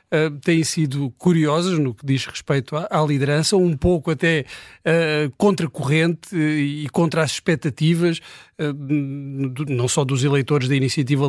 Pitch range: 150-175 Hz